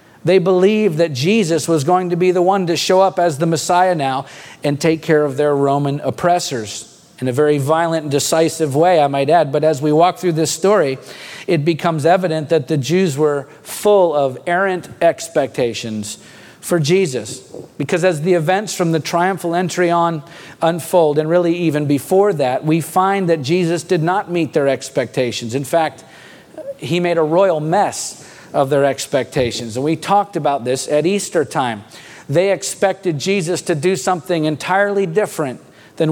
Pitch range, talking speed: 150-185 Hz, 175 wpm